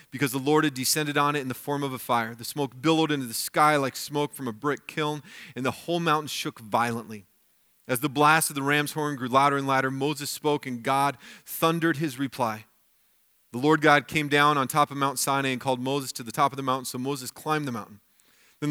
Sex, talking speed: male, 235 wpm